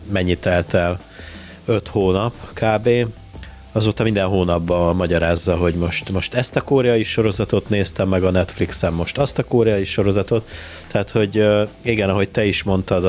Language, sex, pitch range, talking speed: Hungarian, male, 90-100 Hz, 150 wpm